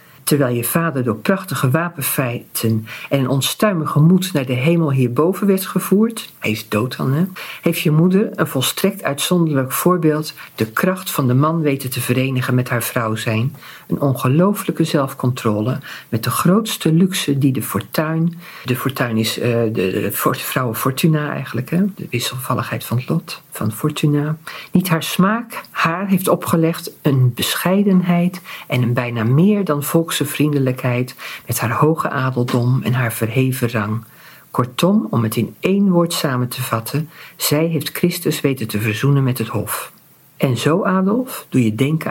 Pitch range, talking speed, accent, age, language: 125-170 Hz, 165 wpm, Dutch, 50-69, Dutch